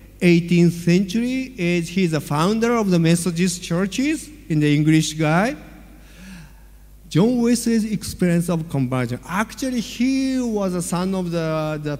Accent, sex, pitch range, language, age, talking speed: Japanese, male, 125-190 Hz, Indonesian, 50-69, 135 wpm